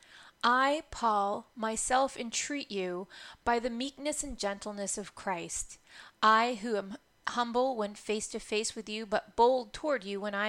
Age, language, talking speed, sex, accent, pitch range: 30-49, English, 160 wpm, female, American, 200-245 Hz